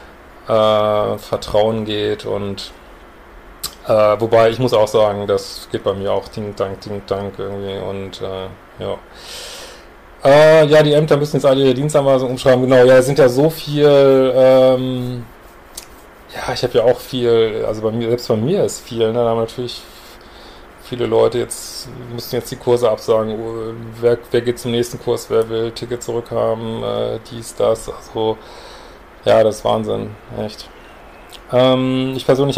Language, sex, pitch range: German, male, 110-130 Hz